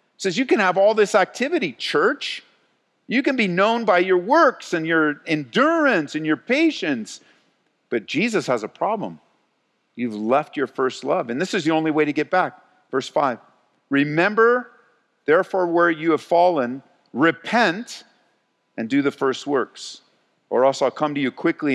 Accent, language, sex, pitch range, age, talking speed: American, English, male, 115-170 Hz, 50-69, 170 wpm